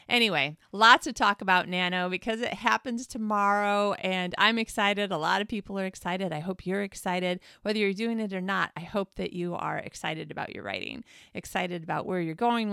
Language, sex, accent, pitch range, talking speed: English, female, American, 180-225 Hz, 205 wpm